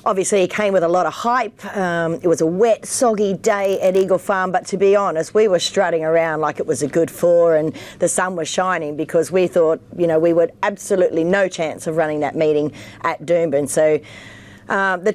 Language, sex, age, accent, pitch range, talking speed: English, female, 40-59, Australian, 160-195 Hz, 220 wpm